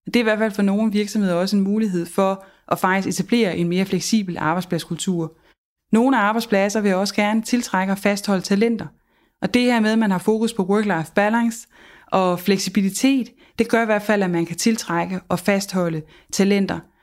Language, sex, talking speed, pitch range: Danish, female, 185 wpm, 185-220 Hz